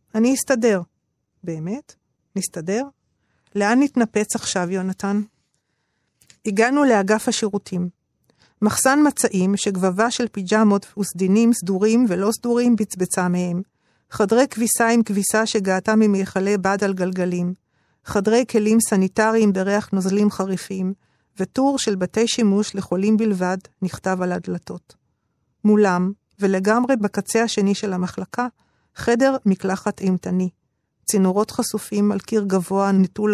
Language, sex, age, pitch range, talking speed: Hebrew, female, 50-69, 190-220 Hz, 110 wpm